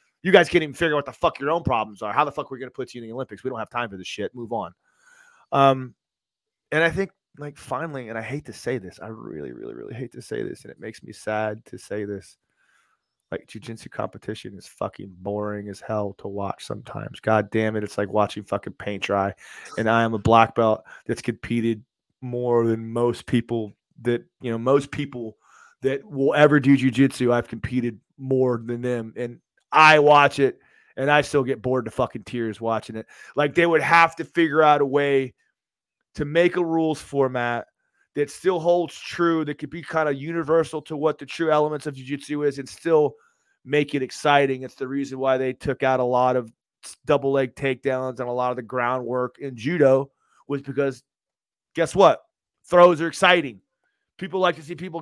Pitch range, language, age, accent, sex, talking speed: 115-150 Hz, English, 30-49, American, male, 210 wpm